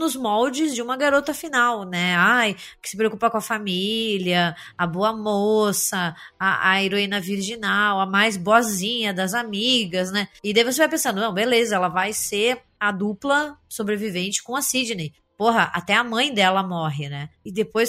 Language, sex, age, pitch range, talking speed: Portuguese, female, 20-39, 195-245 Hz, 175 wpm